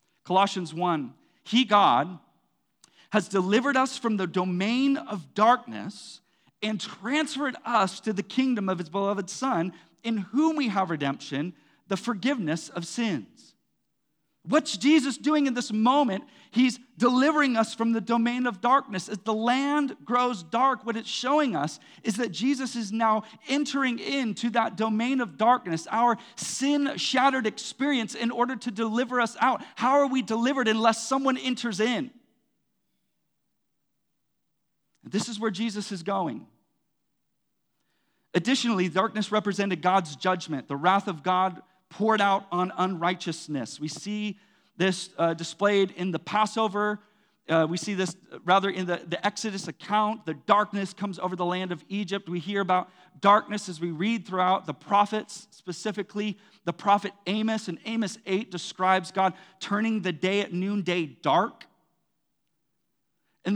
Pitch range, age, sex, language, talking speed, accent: 185-235 Hz, 40-59, male, English, 145 wpm, American